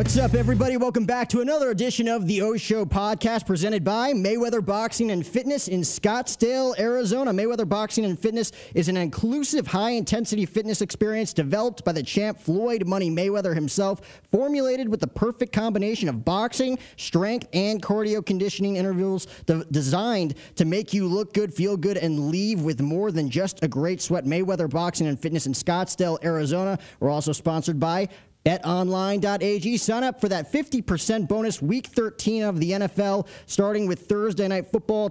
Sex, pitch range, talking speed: male, 165-215 Hz, 165 wpm